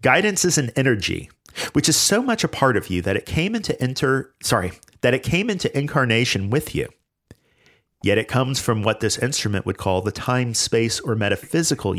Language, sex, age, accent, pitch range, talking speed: English, male, 40-59, American, 100-140 Hz, 195 wpm